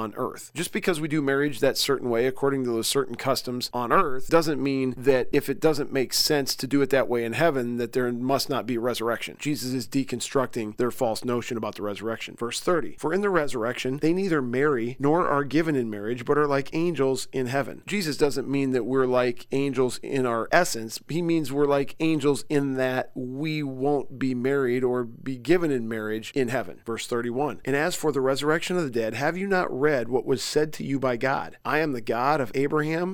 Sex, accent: male, American